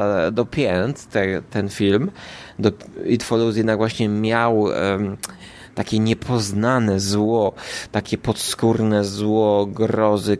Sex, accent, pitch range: male, native, 105-135 Hz